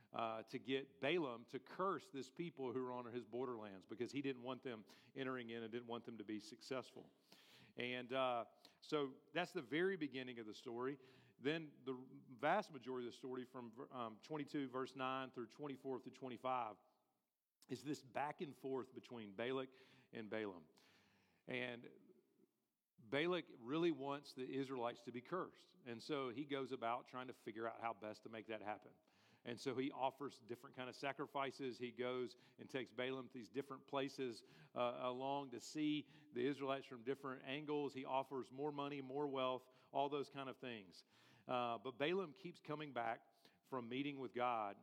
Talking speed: 180 wpm